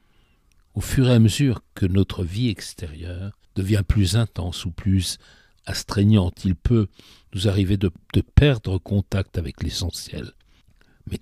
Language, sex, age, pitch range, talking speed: French, male, 60-79, 85-105 Hz, 140 wpm